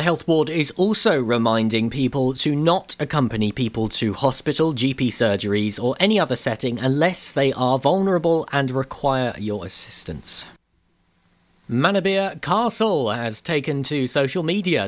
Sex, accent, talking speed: male, British, 135 wpm